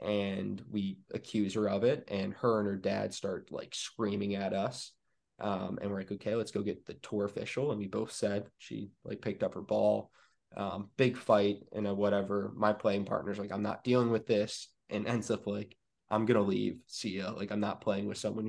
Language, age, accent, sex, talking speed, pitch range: English, 20-39, American, male, 215 wpm, 100-115 Hz